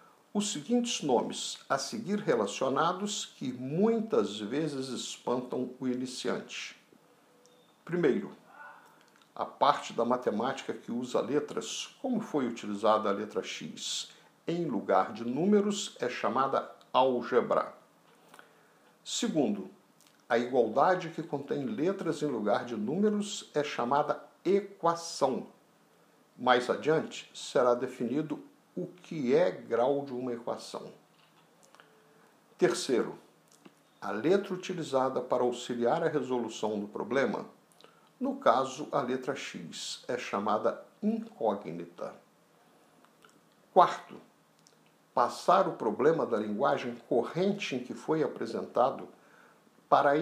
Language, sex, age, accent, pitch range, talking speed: Portuguese, male, 60-79, Brazilian, 125-205 Hz, 105 wpm